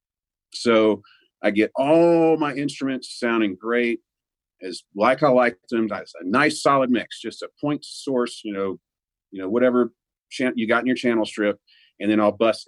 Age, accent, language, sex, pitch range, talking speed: 40-59, American, English, male, 110-130 Hz, 180 wpm